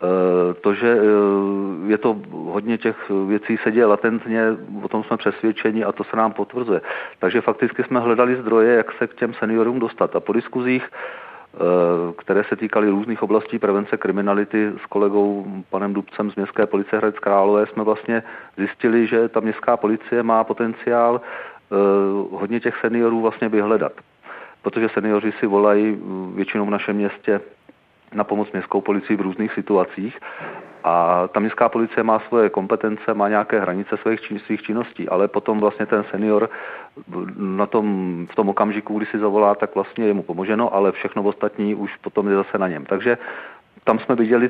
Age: 40-59